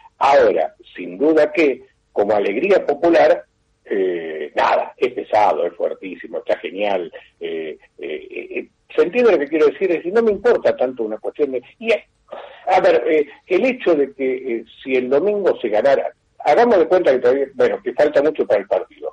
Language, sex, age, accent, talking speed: Spanish, male, 50-69, Argentinian, 190 wpm